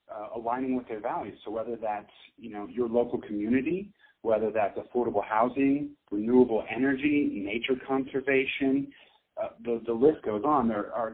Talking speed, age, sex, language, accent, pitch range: 155 wpm, 40-59, male, English, American, 110-135 Hz